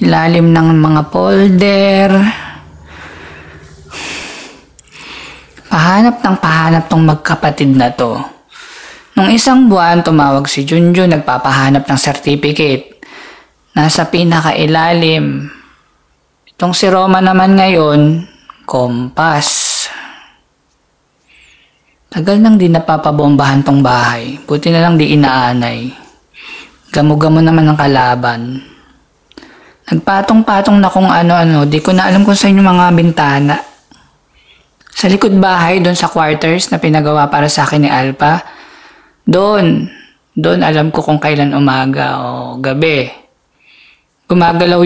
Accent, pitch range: native, 140-180 Hz